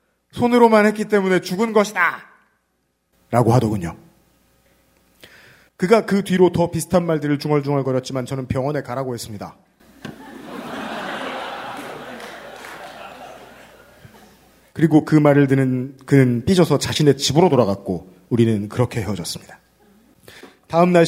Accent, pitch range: native, 120-175 Hz